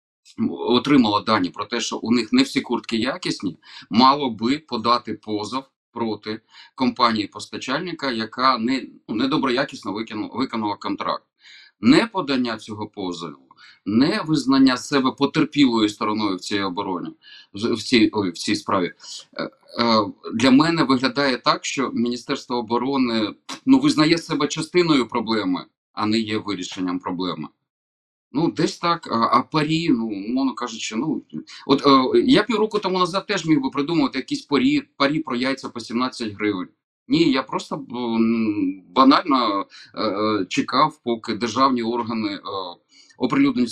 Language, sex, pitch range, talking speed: Ukrainian, male, 110-150 Hz, 135 wpm